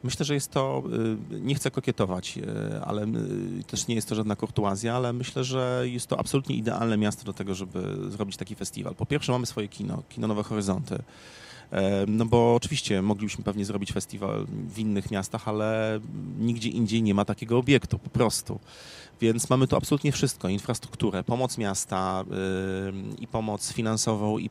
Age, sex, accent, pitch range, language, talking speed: 30-49, male, native, 105-130 Hz, Polish, 165 wpm